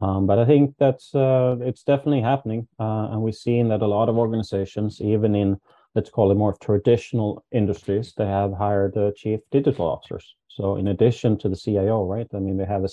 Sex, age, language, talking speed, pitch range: male, 30-49, English, 215 wpm, 100-120 Hz